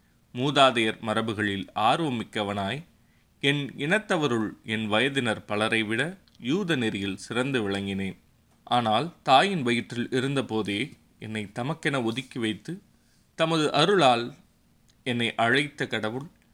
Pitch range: 105-135 Hz